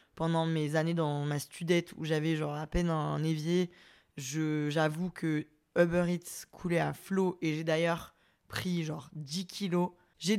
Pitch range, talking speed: 165-200 Hz, 170 wpm